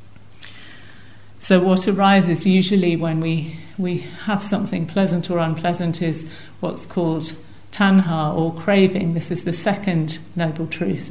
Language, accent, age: English, British, 50-69